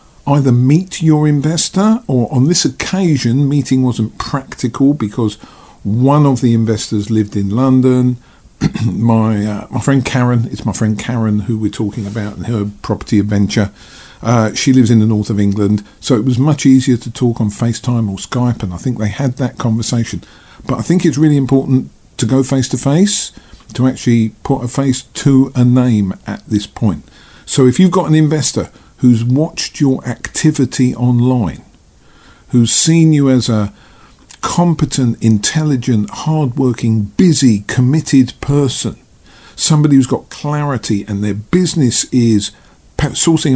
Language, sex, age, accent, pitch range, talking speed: English, male, 50-69, British, 110-145 Hz, 160 wpm